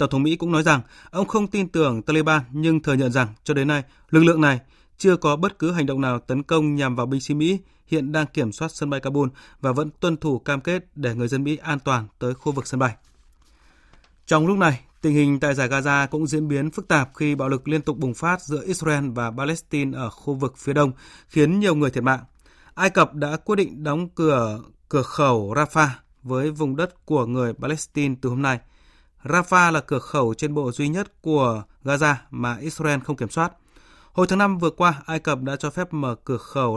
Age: 20-39